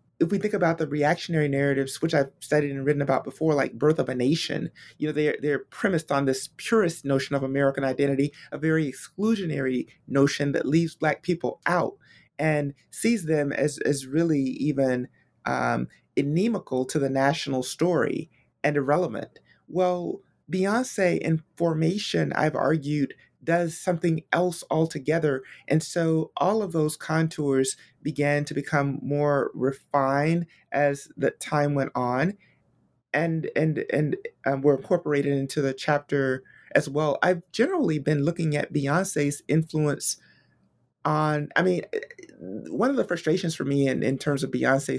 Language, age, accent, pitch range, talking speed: English, 30-49, American, 140-165 Hz, 150 wpm